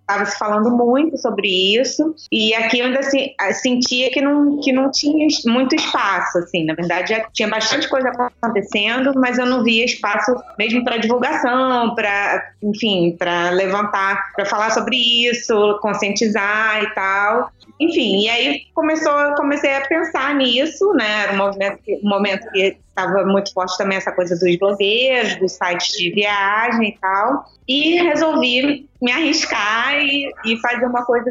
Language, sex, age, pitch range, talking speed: Portuguese, female, 20-39, 190-250 Hz, 155 wpm